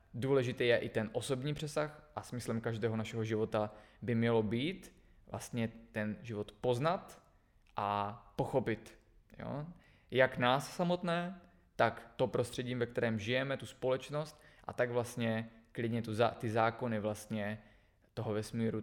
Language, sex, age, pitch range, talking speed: Czech, male, 20-39, 110-125 Hz, 130 wpm